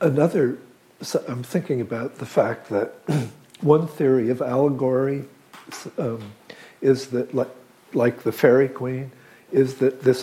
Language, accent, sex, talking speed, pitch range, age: English, American, male, 135 wpm, 115-135 Hz, 60-79